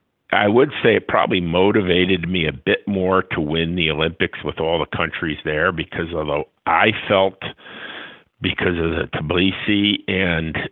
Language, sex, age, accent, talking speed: English, male, 50-69, American, 155 wpm